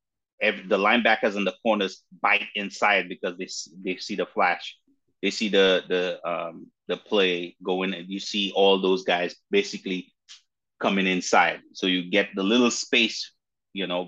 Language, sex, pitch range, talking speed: English, male, 95-110 Hz, 165 wpm